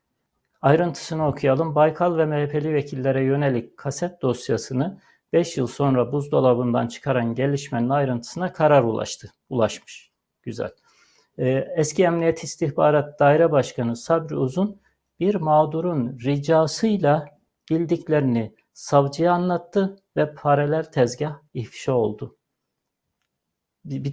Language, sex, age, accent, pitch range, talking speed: Turkish, male, 60-79, native, 130-160 Hz, 95 wpm